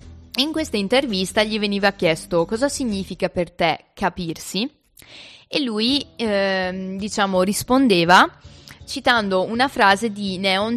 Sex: female